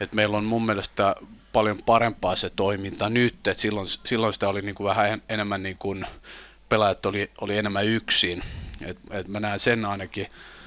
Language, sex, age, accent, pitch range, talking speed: Finnish, male, 30-49, native, 100-120 Hz, 180 wpm